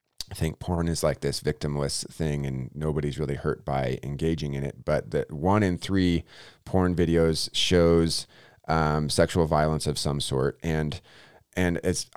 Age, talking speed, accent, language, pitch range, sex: 30-49, 165 wpm, American, English, 80-95 Hz, male